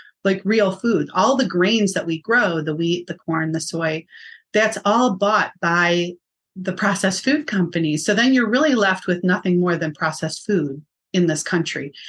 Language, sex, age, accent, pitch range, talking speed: English, female, 30-49, American, 165-215 Hz, 185 wpm